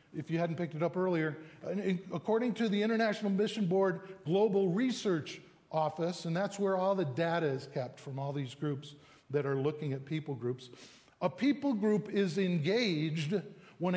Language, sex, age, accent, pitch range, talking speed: English, male, 50-69, American, 145-200 Hz, 170 wpm